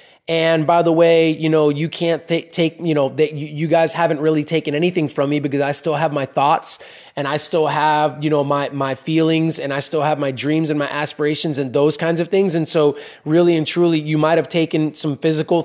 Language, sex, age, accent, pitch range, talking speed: English, male, 20-39, American, 150-170 Hz, 225 wpm